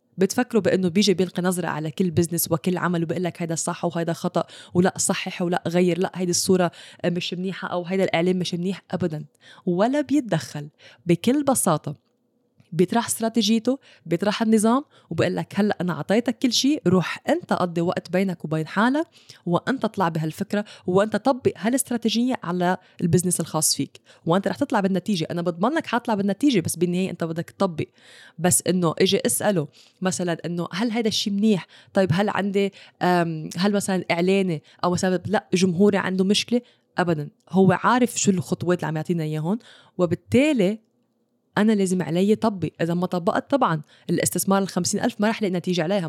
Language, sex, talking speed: English, female, 160 wpm